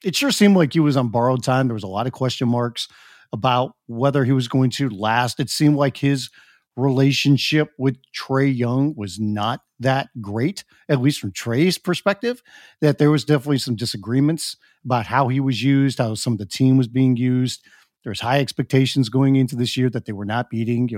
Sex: male